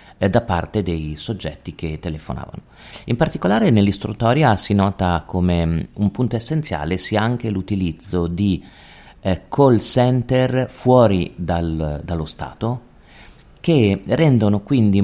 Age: 40-59